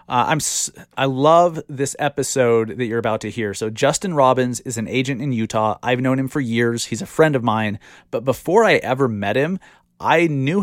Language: English